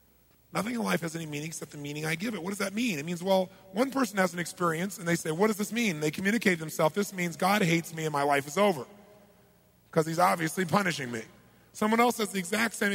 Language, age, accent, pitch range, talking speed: English, 30-49, American, 145-195 Hz, 260 wpm